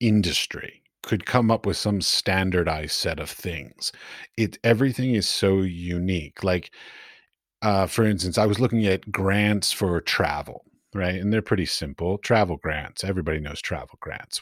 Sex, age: male, 40-59